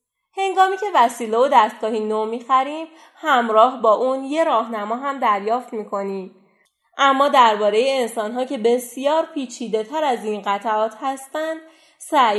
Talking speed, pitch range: 130 wpm, 200-270 Hz